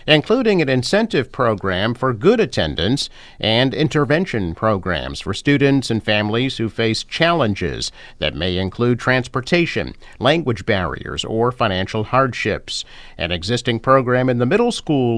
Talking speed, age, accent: 130 wpm, 50-69, American